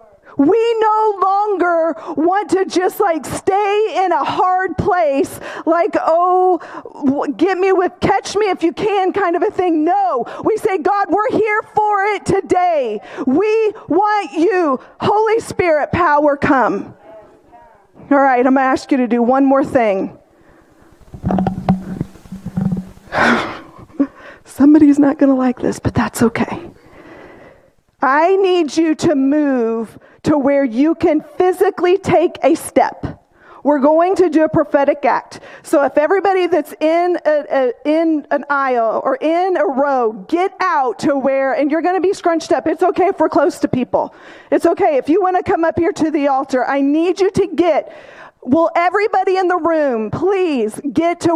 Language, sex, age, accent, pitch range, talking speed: English, female, 40-59, American, 285-370 Hz, 165 wpm